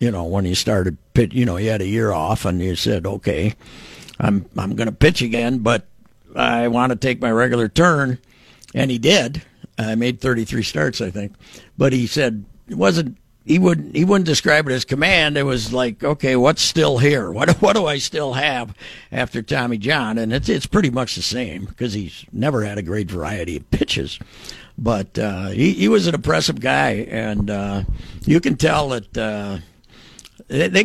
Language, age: English, 60-79